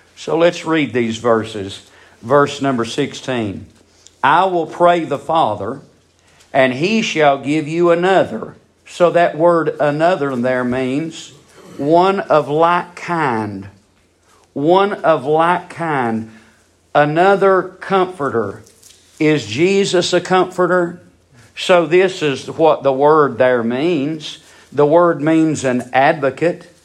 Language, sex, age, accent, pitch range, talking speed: English, male, 50-69, American, 125-170 Hz, 115 wpm